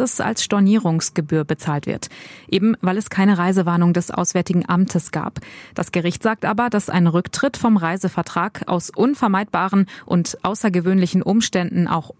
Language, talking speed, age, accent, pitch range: German, 140 wpm, 20-39, German, 175-205 Hz